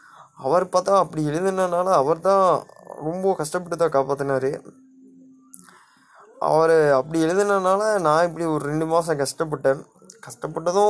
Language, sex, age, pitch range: Tamil, male, 20-39, 160-215 Hz